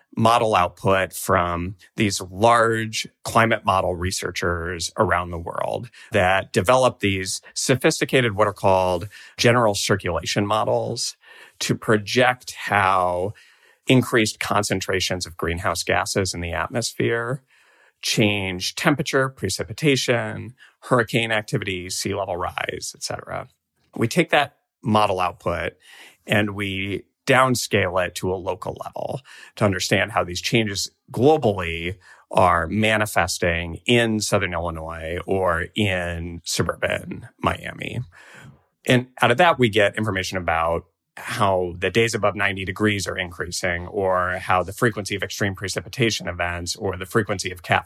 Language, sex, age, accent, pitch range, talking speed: English, male, 30-49, American, 90-115 Hz, 125 wpm